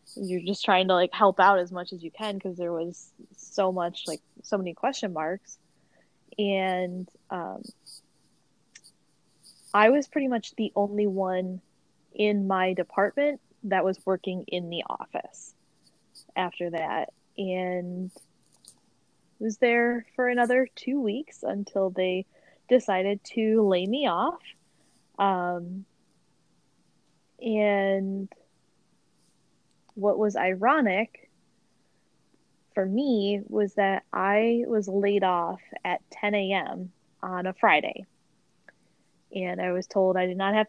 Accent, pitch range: American, 185-210 Hz